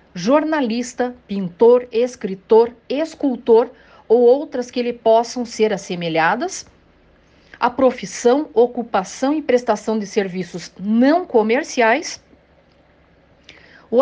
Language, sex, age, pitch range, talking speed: Portuguese, female, 50-69, 210-275 Hz, 90 wpm